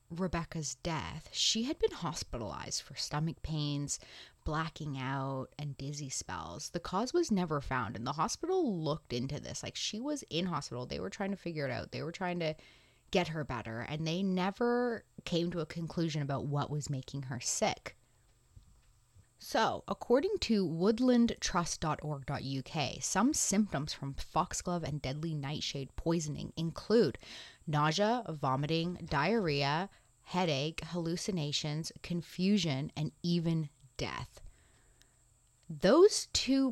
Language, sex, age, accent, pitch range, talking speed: English, female, 20-39, American, 140-185 Hz, 130 wpm